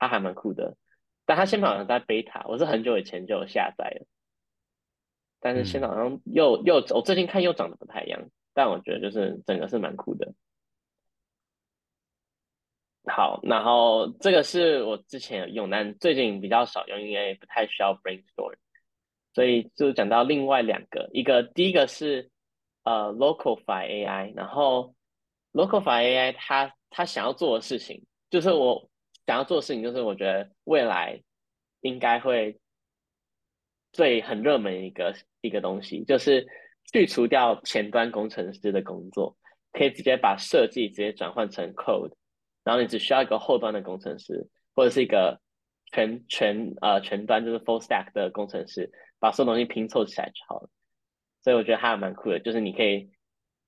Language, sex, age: Chinese, male, 10-29